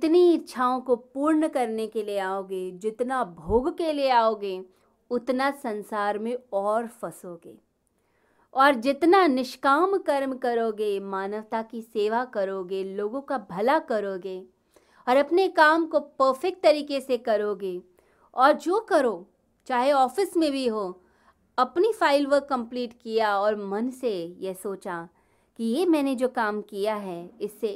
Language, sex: Hindi, female